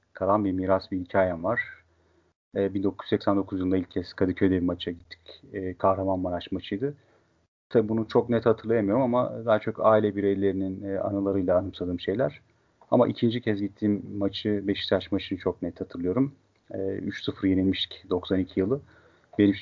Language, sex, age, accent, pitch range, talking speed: Turkish, male, 40-59, native, 95-105 Hz, 145 wpm